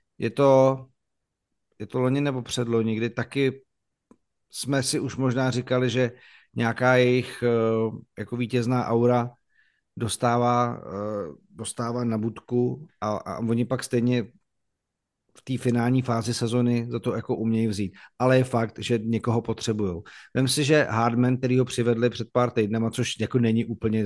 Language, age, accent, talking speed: Czech, 50-69, native, 145 wpm